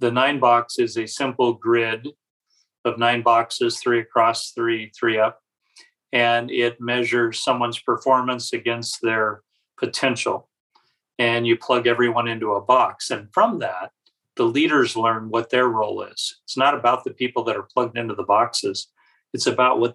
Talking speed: 160 wpm